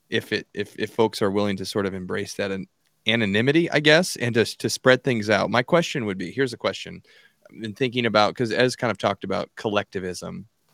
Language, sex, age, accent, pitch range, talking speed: English, male, 30-49, American, 105-125 Hz, 230 wpm